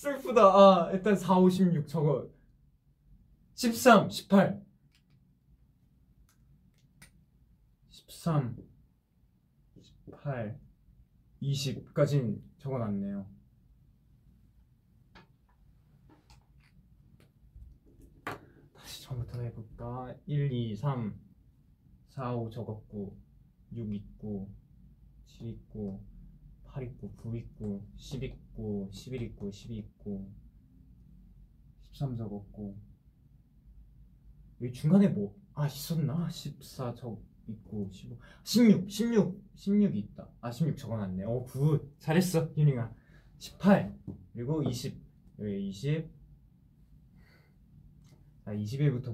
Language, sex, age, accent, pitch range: Korean, male, 20-39, native, 105-155 Hz